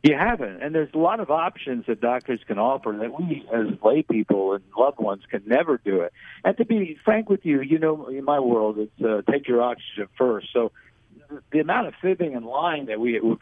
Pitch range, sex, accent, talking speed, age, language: 115-145 Hz, male, American, 230 wpm, 60-79, English